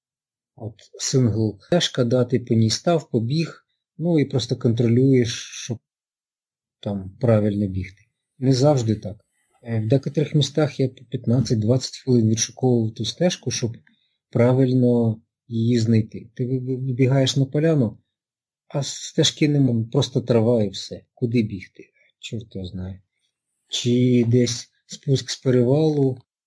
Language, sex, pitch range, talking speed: Ukrainian, male, 115-135 Hz, 120 wpm